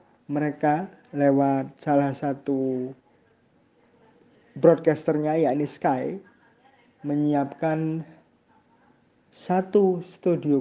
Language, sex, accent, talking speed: Indonesian, male, native, 55 wpm